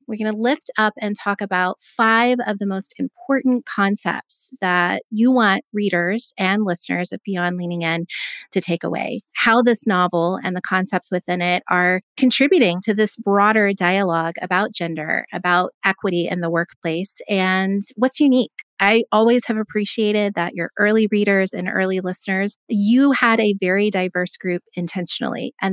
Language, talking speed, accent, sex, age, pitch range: English, 165 wpm, American, female, 30-49, 180-230 Hz